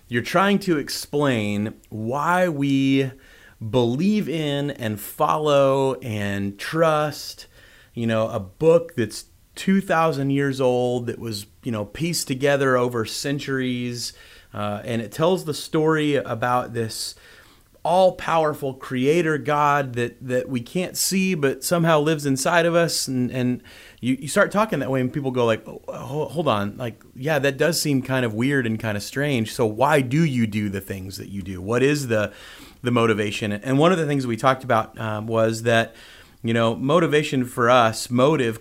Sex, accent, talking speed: male, American, 170 wpm